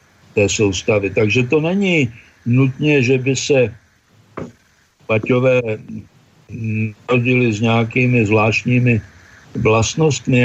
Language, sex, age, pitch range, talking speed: Slovak, male, 60-79, 110-130 Hz, 85 wpm